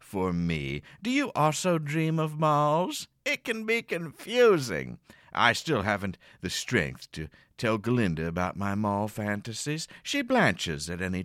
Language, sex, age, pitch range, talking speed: English, male, 60-79, 95-155 Hz, 150 wpm